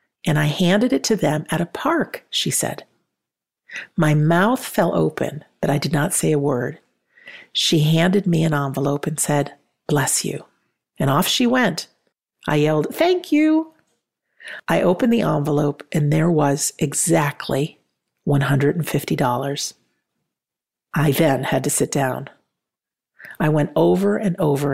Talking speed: 145 wpm